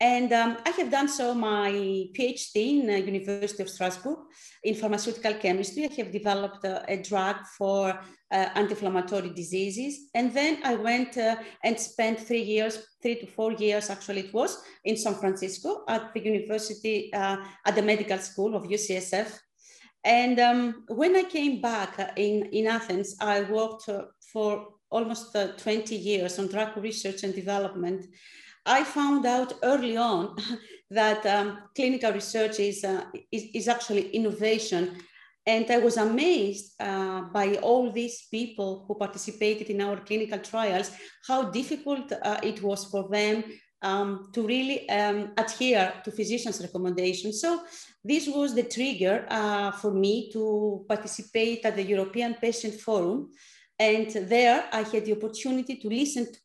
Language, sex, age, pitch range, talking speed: English, female, 40-59, 200-240 Hz, 155 wpm